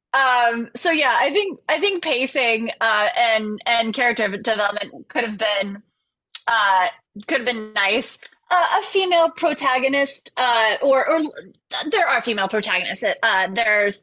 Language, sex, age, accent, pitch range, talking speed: English, female, 20-39, American, 210-290 Hz, 145 wpm